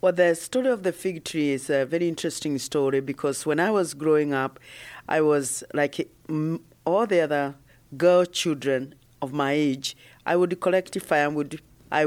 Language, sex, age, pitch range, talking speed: English, female, 40-59, 135-170 Hz, 170 wpm